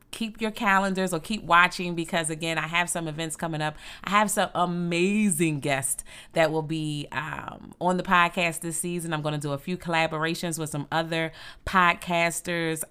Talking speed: 180 wpm